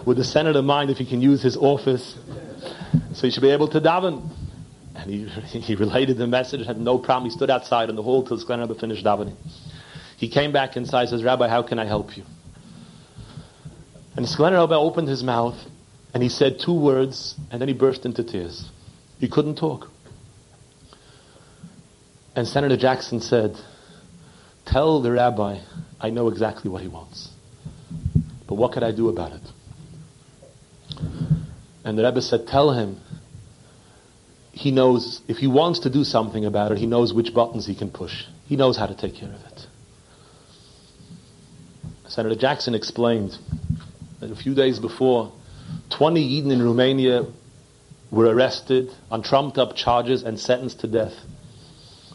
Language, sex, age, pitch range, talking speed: English, male, 40-59, 115-140 Hz, 160 wpm